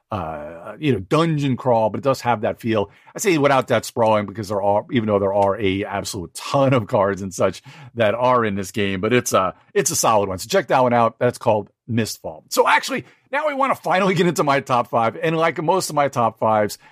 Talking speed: 245 wpm